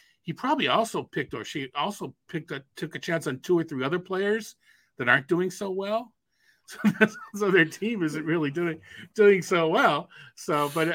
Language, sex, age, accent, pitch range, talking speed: English, male, 40-59, American, 130-175 Hz, 190 wpm